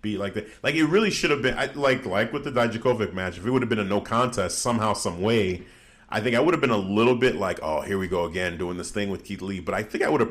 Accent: American